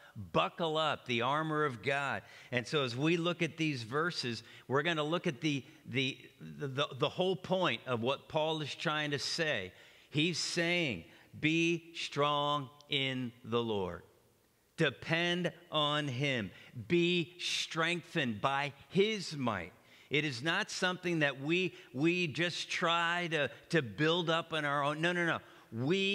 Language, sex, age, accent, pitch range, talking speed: English, male, 50-69, American, 140-175 Hz, 155 wpm